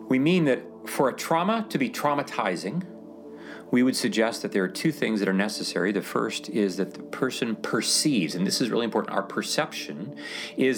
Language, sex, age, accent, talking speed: English, male, 40-59, American, 195 wpm